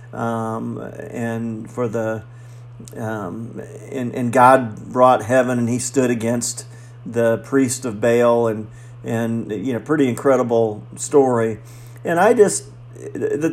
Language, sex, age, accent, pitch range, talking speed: English, male, 50-69, American, 115-135 Hz, 130 wpm